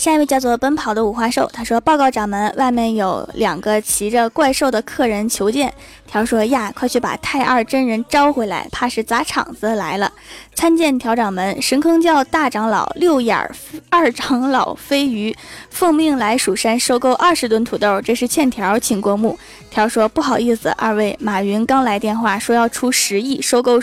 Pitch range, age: 220-275 Hz, 20-39